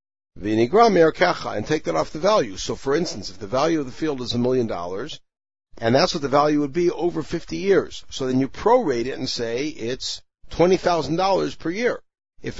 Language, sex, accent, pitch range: English, male, American, 115-160 Hz